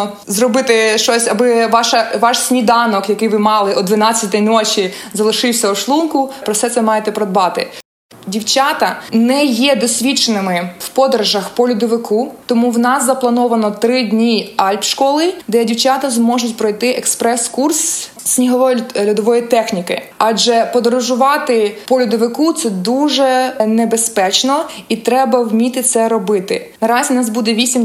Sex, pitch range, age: female, 220-255 Hz, 20-39